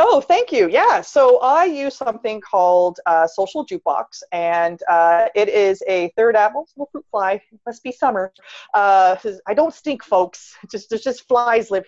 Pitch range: 190-265 Hz